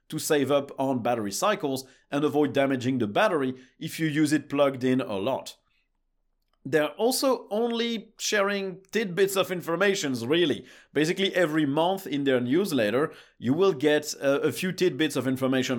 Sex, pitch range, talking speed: male, 130-185 Hz, 155 wpm